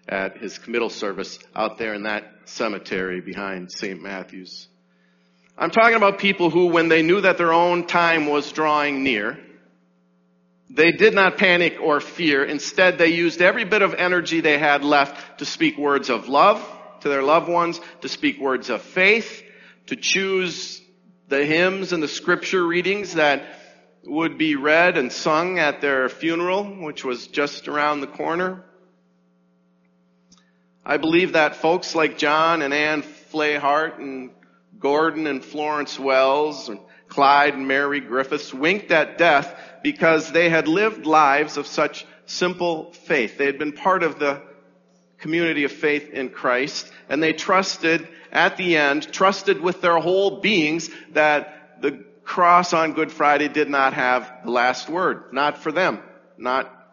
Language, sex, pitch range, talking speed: English, male, 135-175 Hz, 155 wpm